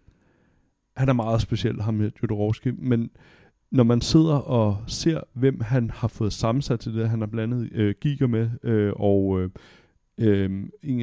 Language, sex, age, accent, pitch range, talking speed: Danish, male, 30-49, native, 105-125 Hz, 145 wpm